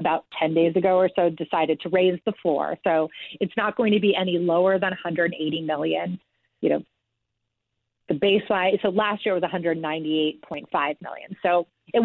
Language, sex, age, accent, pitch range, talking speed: English, female, 30-49, American, 160-190 Hz, 170 wpm